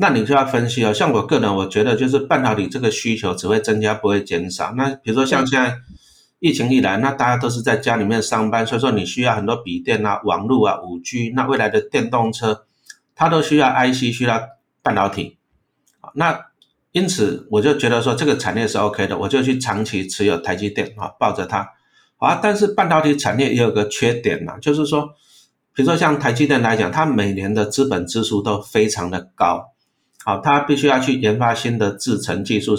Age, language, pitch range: 50-69, Chinese, 105-140 Hz